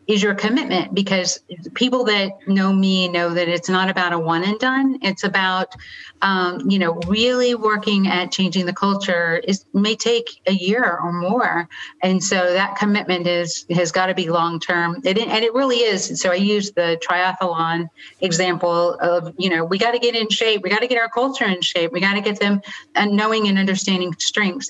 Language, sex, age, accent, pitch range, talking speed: English, female, 40-59, American, 175-205 Hz, 200 wpm